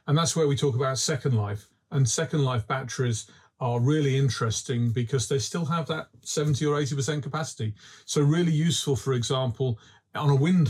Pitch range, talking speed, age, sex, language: 120-145 Hz, 180 wpm, 40-59, male, Slovak